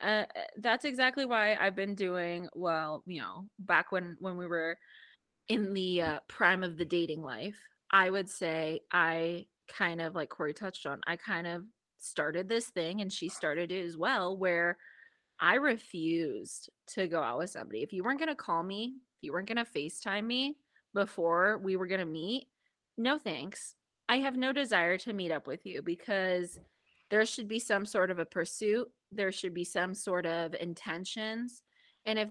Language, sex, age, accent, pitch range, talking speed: English, female, 20-39, American, 170-225 Hz, 190 wpm